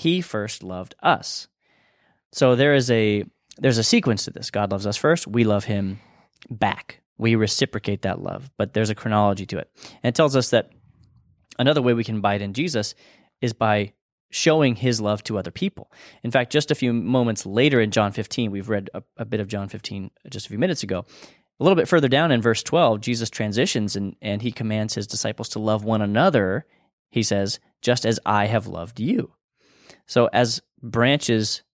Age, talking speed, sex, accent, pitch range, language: 20-39, 200 wpm, male, American, 105-130 Hz, English